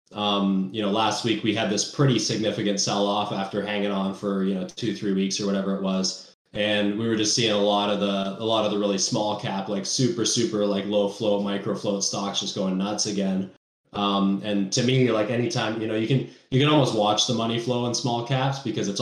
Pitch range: 100-110 Hz